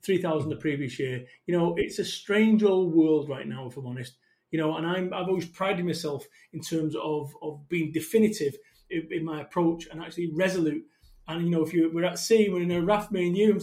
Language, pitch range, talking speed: English, 165-215 Hz, 235 wpm